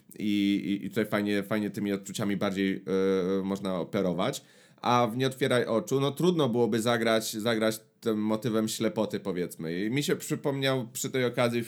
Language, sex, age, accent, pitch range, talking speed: Polish, male, 30-49, native, 100-130 Hz, 170 wpm